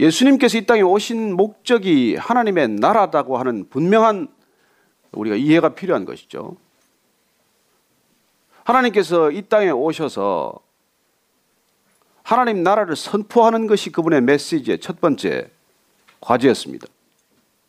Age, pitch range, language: 40-59, 195-275 Hz, Korean